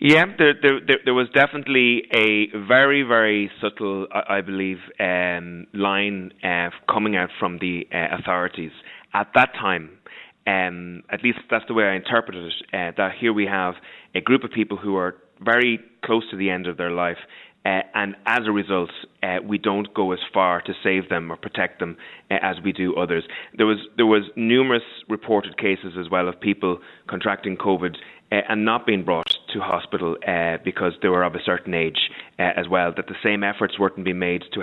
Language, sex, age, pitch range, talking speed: English, male, 30-49, 95-110 Hz, 200 wpm